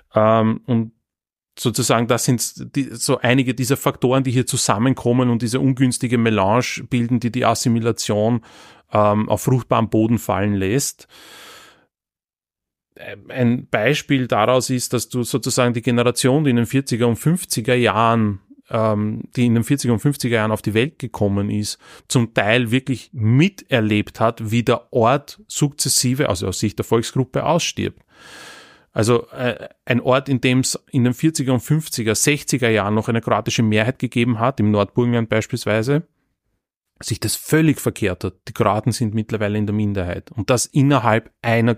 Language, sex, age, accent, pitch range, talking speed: German, male, 30-49, Austrian, 110-130 Hz, 155 wpm